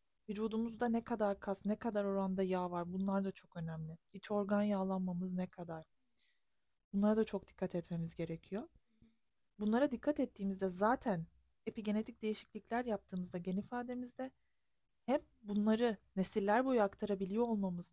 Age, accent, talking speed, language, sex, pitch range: 30-49, native, 130 wpm, Turkish, female, 185-225 Hz